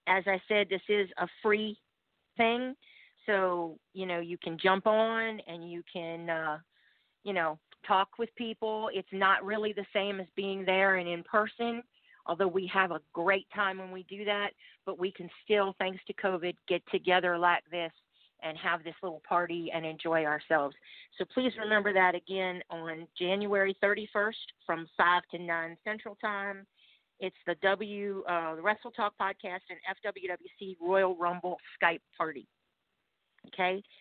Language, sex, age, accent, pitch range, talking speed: English, female, 40-59, American, 175-210 Hz, 165 wpm